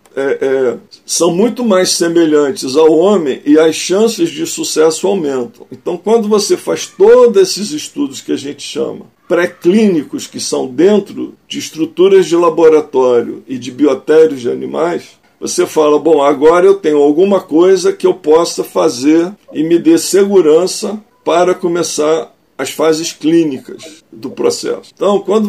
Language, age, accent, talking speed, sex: Portuguese, 50-69, Brazilian, 145 wpm, male